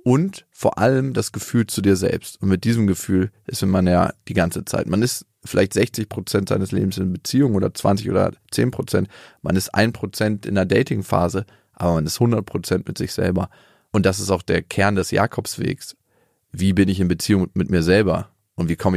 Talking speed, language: 200 wpm, English